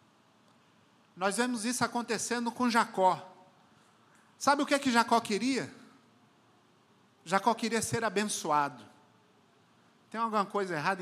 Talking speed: 115 wpm